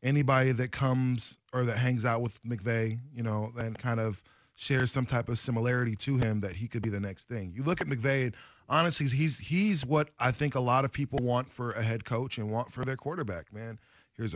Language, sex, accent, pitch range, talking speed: English, male, American, 110-140 Hz, 225 wpm